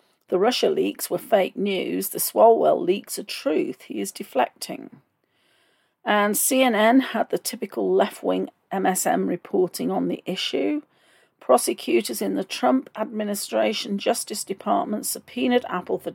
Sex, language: female, English